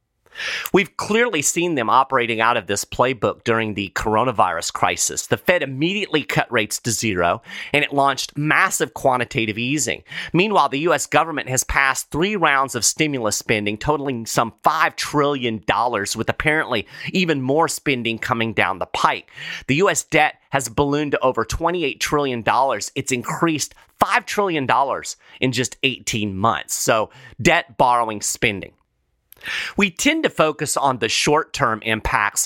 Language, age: English, 30-49